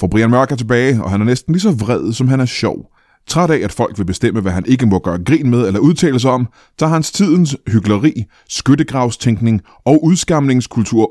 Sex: male